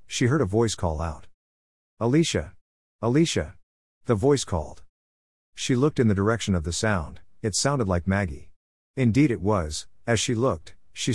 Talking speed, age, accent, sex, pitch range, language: 160 wpm, 50-69, American, male, 80-115 Hz, English